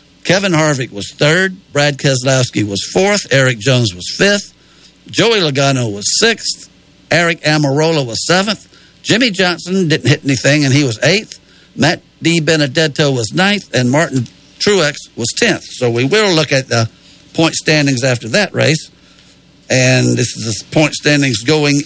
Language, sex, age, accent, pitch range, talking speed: English, male, 60-79, American, 125-160 Hz, 155 wpm